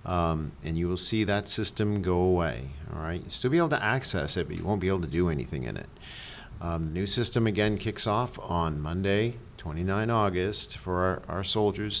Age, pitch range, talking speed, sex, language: 50-69, 85-105 Hz, 215 wpm, male, English